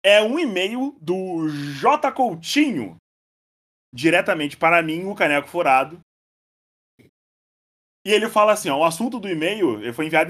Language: Portuguese